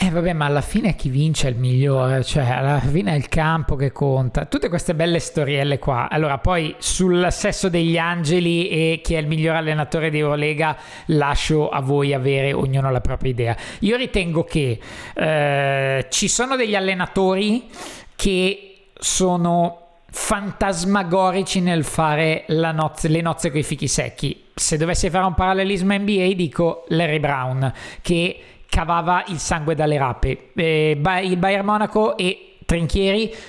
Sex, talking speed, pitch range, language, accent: male, 160 wpm, 150-195 Hz, Italian, native